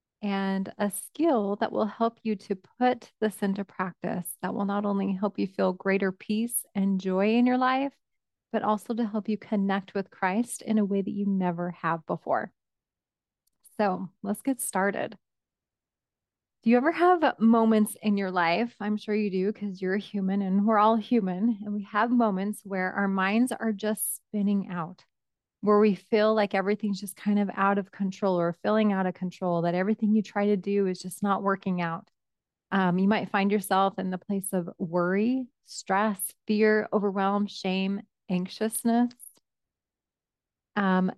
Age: 20-39